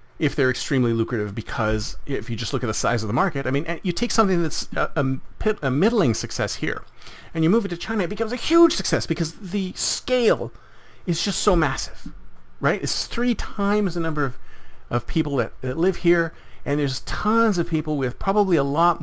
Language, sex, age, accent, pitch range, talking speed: English, male, 40-59, American, 120-195 Hz, 210 wpm